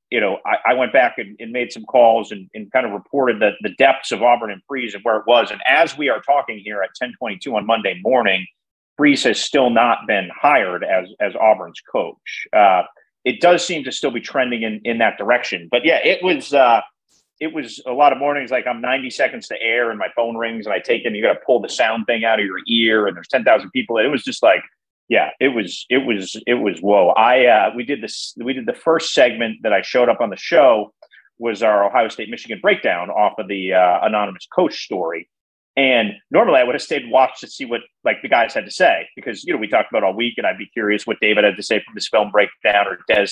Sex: male